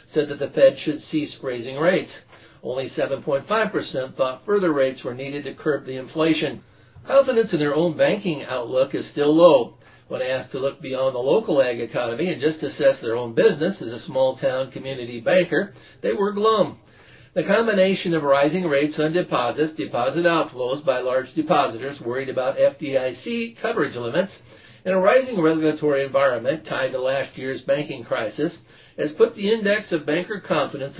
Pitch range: 135-180 Hz